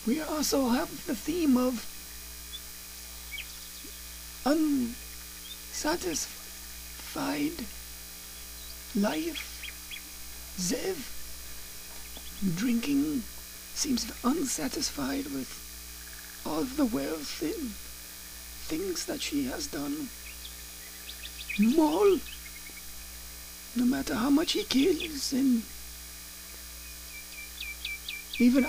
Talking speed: 65 wpm